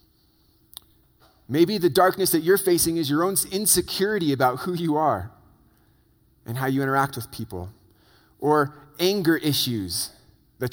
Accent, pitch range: American, 125-170 Hz